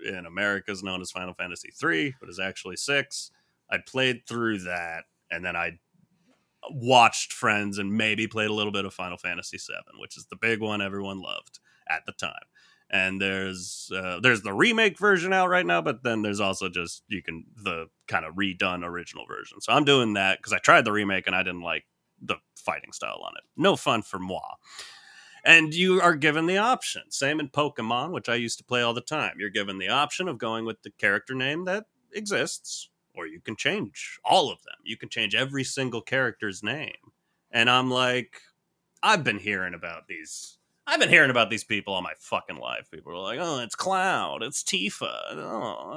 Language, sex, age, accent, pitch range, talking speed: English, male, 30-49, American, 95-145 Hz, 200 wpm